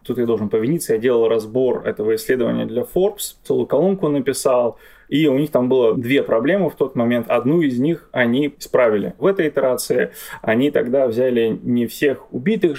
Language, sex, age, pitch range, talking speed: Russian, male, 20-39, 125-180 Hz, 180 wpm